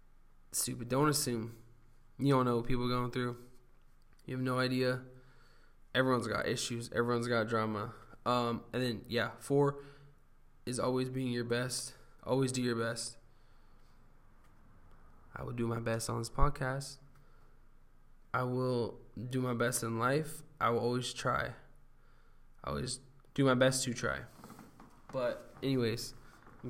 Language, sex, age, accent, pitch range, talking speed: English, male, 20-39, American, 115-130 Hz, 145 wpm